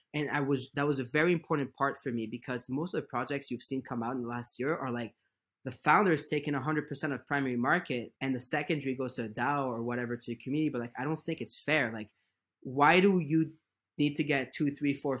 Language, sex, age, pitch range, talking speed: English, male, 20-39, 130-160 Hz, 245 wpm